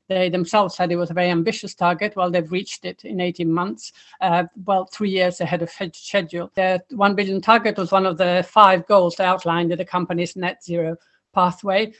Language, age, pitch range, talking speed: English, 50-69, 175-200 Hz, 210 wpm